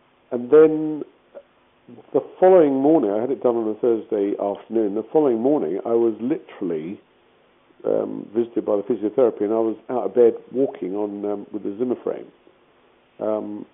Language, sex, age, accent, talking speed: English, male, 50-69, British, 160 wpm